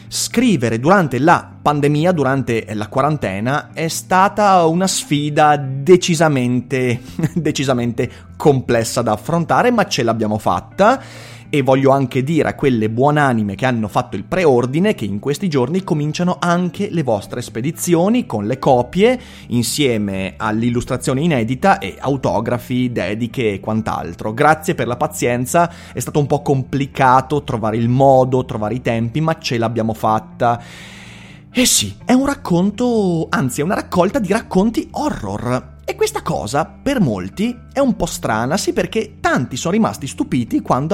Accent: native